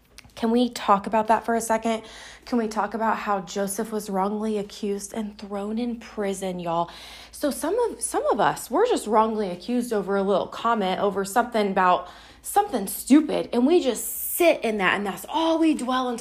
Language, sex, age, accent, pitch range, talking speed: English, female, 20-39, American, 195-255 Hz, 195 wpm